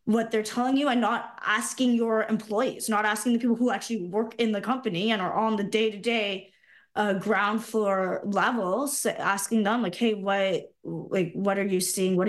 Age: 20-39